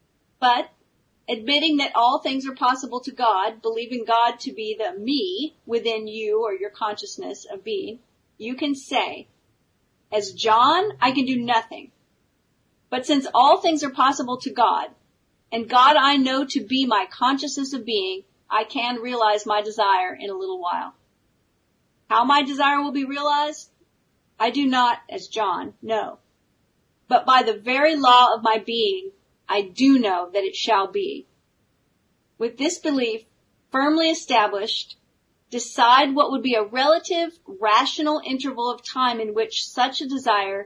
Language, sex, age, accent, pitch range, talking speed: English, female, 40-59, American, 225-285 Hz, 155 wpm